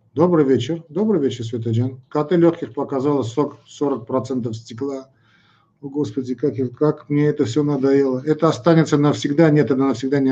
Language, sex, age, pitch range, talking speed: Russian, male, 50-69, 120-145 Hz, 155 wpm